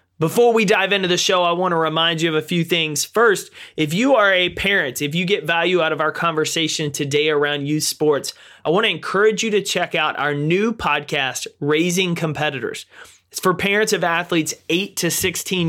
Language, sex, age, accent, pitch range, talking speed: English, male, 30-49, American, 150-185 Hz, 205 wpm